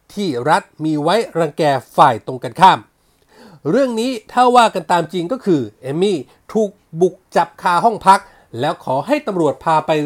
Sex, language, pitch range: male, Thai, 155-220 Hz